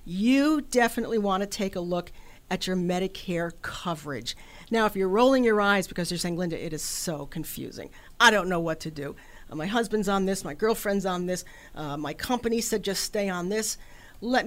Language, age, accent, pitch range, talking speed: English, 50-69, American, 170-235 Hz, 200 wpm